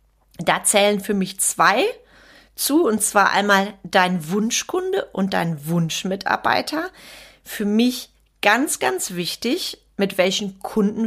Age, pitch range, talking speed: 30-49, 185-235 Hz, 120 wpm